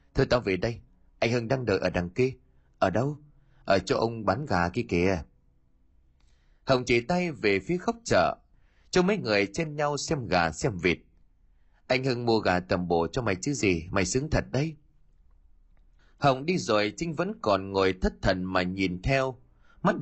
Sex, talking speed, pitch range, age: male, 190 wpm, 85-140 Hz, 30-49